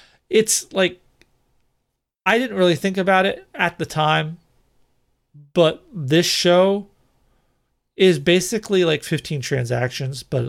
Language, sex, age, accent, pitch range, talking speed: English, male, 40-59, American, 135-180 Hz, 115 wpm